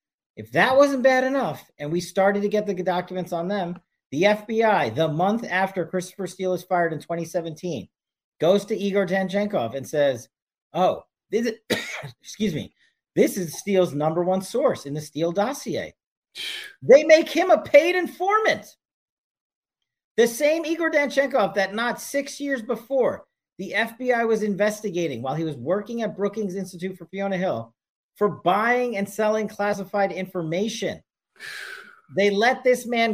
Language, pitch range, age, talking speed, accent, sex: English, 165-220 Hz, 40-59, 150 wpm, American, male